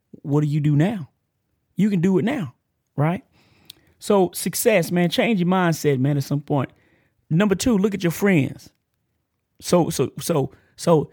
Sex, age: male, 30-49